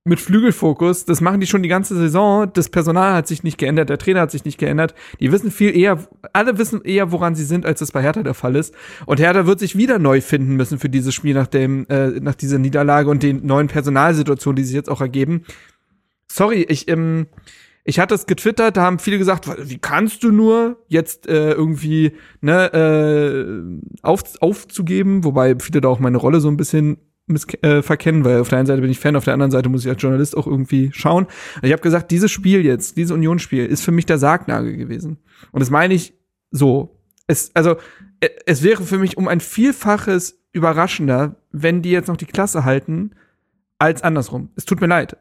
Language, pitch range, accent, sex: German, 145-190 Hz, German, male